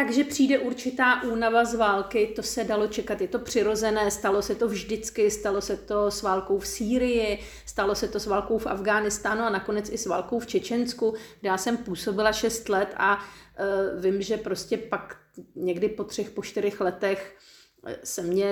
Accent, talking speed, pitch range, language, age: native, 190 wpm, 185-220 Hz, Czech, 40-59